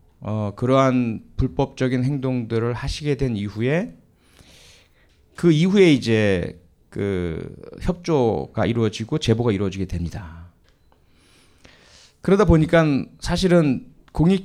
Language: Korean